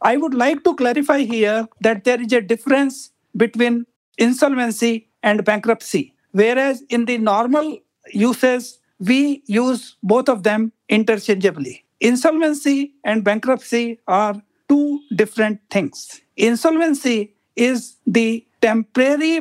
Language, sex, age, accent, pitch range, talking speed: English, male, 60-79, Indian, 215-260 Hz, 115 wpm